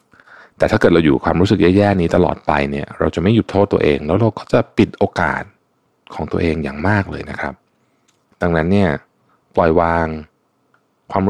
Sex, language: male, Thai